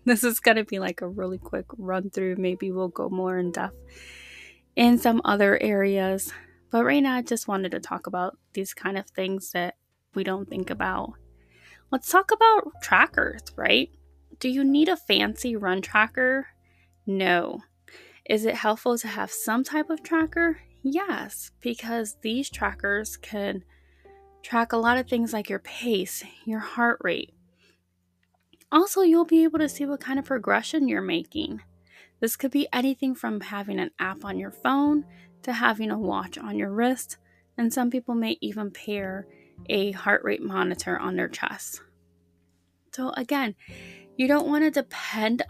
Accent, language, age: American, English, 20-39